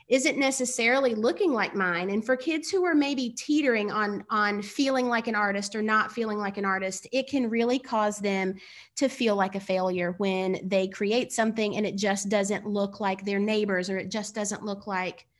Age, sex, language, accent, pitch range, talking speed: 30-49, female, English, American, 205-255 Hz, 205 wpm